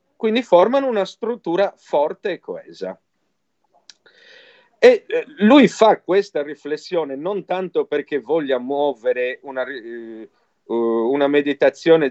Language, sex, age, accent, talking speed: Italian, male, 40-59, native, 115 wpm